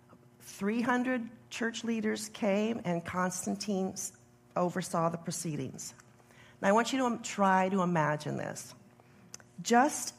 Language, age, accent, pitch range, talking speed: English, 40-59, American, 170-225 Hz, 110 wpm